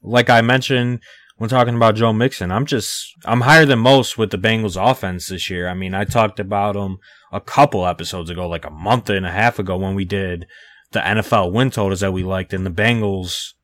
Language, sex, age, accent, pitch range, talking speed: English, male, 20-39, American, 95-110 Hz, 220 wpm